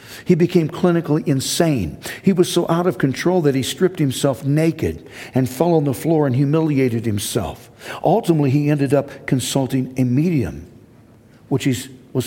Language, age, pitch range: English, 60-79, 120-160 Hz